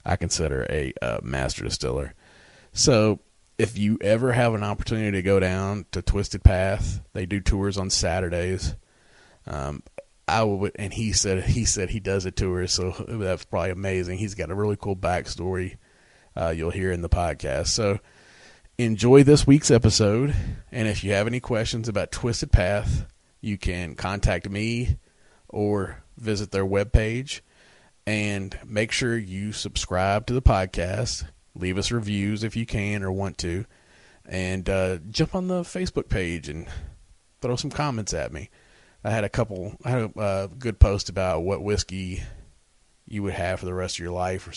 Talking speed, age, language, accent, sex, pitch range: 170 wpm, 30-49, English, American, male, 90-110 Hz